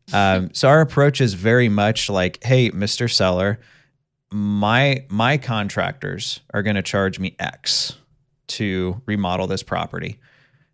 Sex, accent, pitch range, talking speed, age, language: male, American, 95-130 Hz, 140 wpm, 30-49, English